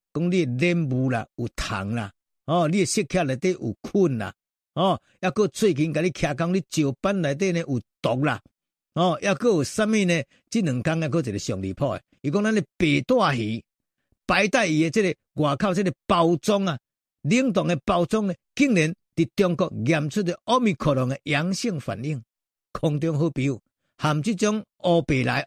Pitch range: 140-200 Hz